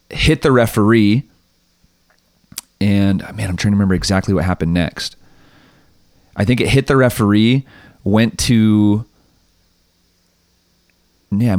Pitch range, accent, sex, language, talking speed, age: 90-105 Hz, American, male, English, 120 wpm, 30-49